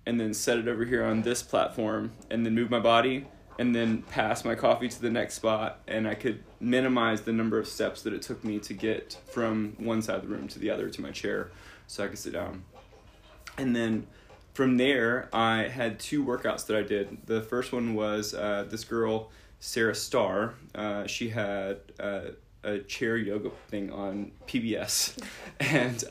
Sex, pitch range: male, 105-120 Hz